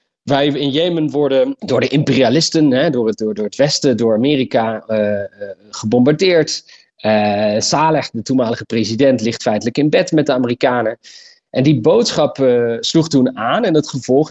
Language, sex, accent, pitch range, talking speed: Dutch, male, Dutch, 110-155 Hz, 155 wpm